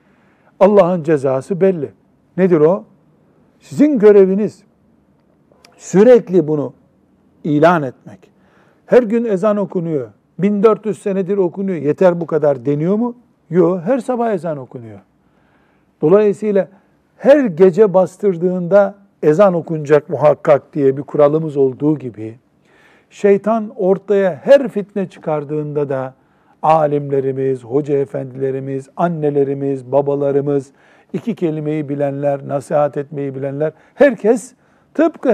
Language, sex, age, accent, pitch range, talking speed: Turkish, male, 60-79, native, 145-205 Hz, 100 wpm